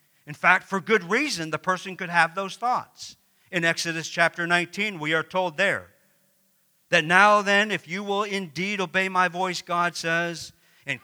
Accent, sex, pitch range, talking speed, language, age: American, male, 155-190 Hz, 175 wpm, English, 50-69